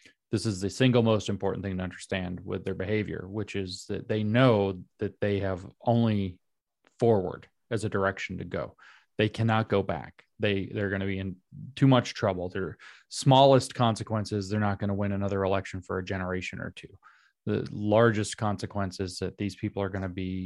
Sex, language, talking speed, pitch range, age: male, English, 195 wpm, 95-115 Hz, 30-49